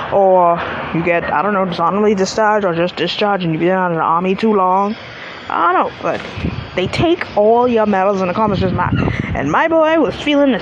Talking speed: 205 wpm